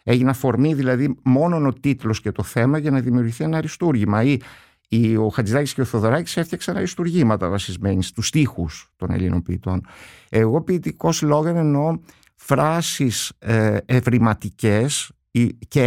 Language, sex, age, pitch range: Greek, male, 50-69, 110-160 Hz